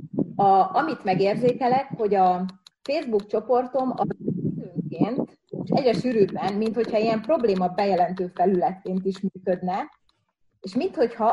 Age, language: 30-49, Hungarian